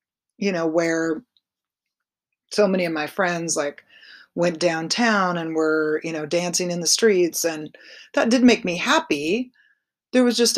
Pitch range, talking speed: 155-210 Hz, 160 wpm